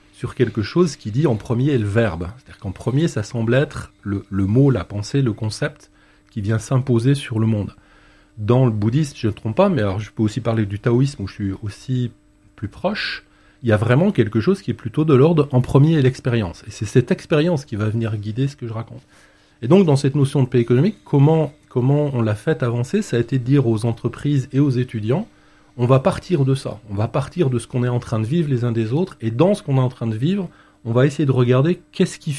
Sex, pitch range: male, 110-145 Hz